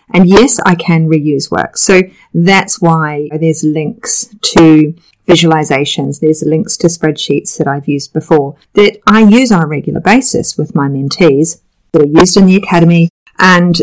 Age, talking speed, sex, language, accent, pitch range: 40-59, 165 wpm, female, English, Australian, 155-190 Hz